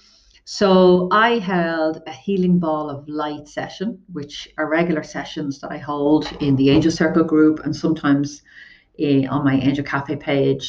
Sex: female